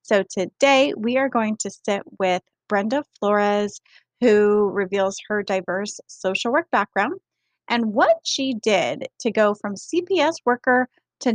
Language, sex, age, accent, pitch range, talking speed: English, female, 20-39, American, 205-260 Hz, 145 wpm